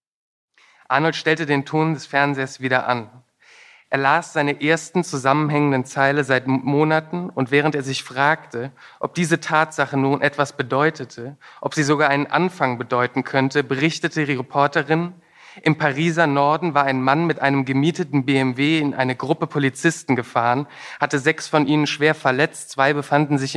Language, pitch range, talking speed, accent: German, 135-155 Hz, 155 wpm, German